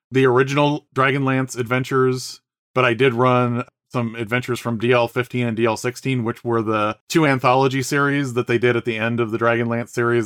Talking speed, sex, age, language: 175 wpm, male, 30-49, English